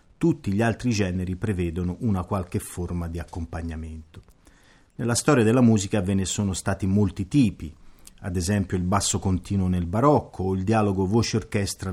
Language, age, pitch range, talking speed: Italian, 40-59, 90-115 Hz, 155 wpm